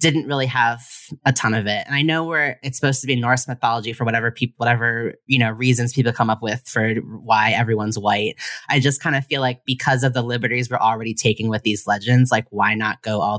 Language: English